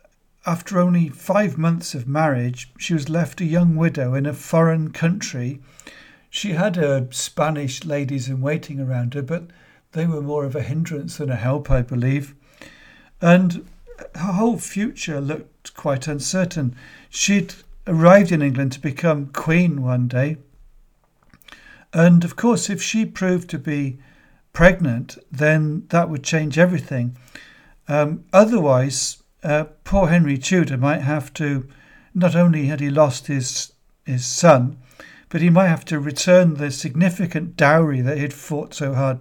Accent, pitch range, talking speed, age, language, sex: British, 135-175 Hz, 145 wpm, 60-79, English, male